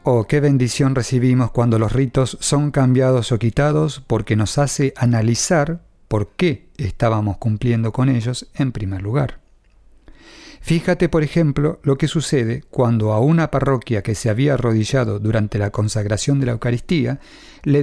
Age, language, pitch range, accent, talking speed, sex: 40-59, English, 110-145 Hz, Argentinian, 150 wpm, male